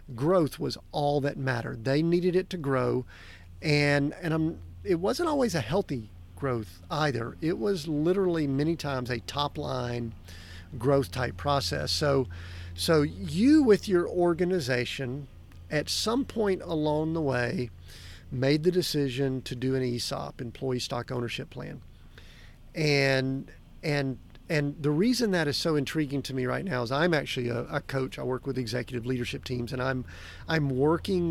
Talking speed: 160 wpm